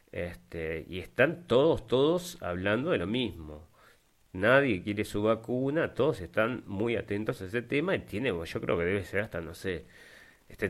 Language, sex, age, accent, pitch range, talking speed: Spanish, male, 30-49, Argentinian, 100-135 Hz, 175 wpm